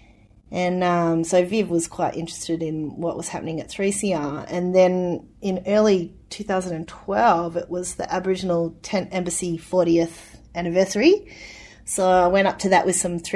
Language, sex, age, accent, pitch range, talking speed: English, female, 30-49, Australian, 170-185 Hz, 155 wpm